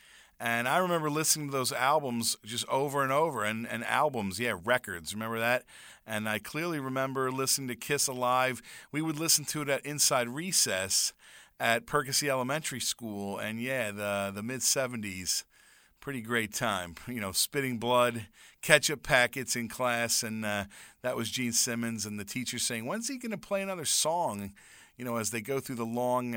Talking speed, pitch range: 180 wpm, 110-140 Hz